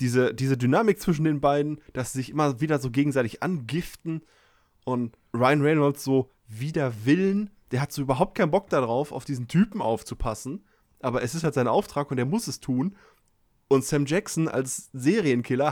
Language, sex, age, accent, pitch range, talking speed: German, male, 20-39, German, 115-150 Hz, 180 wpm